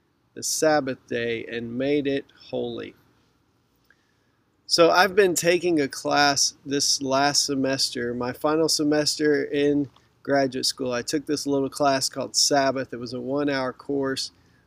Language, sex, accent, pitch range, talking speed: English, male, American, 130-155 Hz, 140 wpm